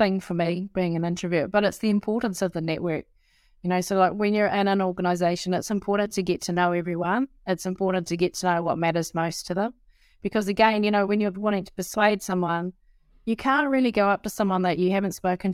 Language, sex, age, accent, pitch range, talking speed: English, female, 30-49, Australian, 170-195 Hz, 235 wpm